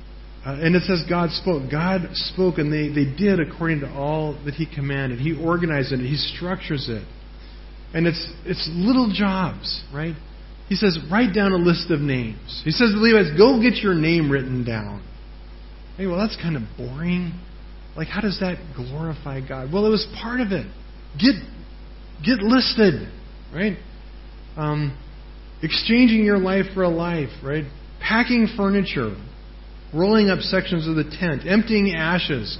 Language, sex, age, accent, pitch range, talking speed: English, male, 40-59, American, 135-190 Hz, 165 wpm